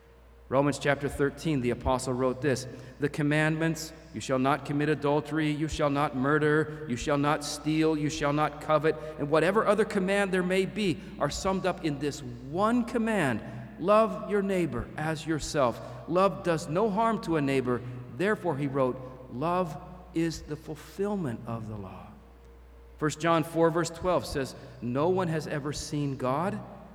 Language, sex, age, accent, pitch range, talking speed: English, male, 40-59, American, 125-180 Hz, 165 wpm